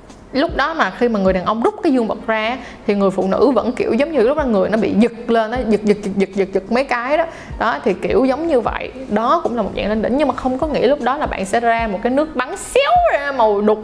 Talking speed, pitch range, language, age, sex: 310 wpm, 210-270 Hz, Vietnamese, 20-39, female